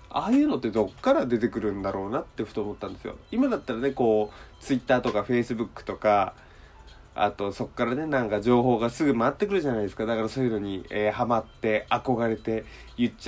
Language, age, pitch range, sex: Japanese, 20-39, 100-135 Hz, male